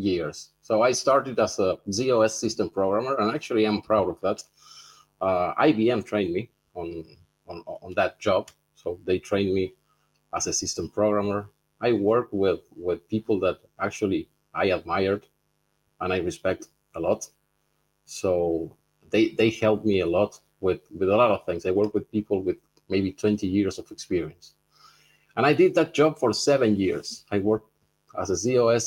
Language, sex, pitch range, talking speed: English, male, 100-115 Hz, 170 wpm